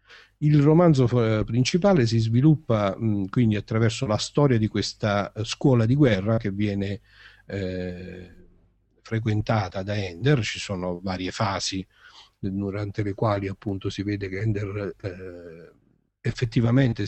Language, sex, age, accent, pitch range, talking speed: Italian, male, 50-69, native, 100-125 Hz, 125 wpm